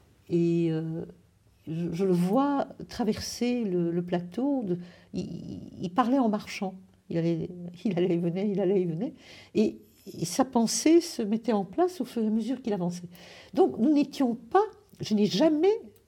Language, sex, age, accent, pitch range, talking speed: French, female, 60-79, French, 160-230 Hz, 185 wpm